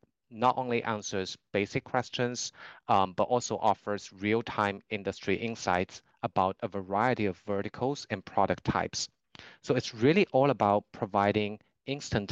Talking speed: 130 wpm